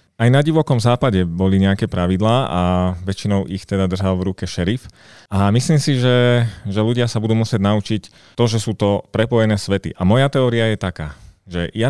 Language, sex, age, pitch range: Slovak, male, 30-49, 95-115 Hz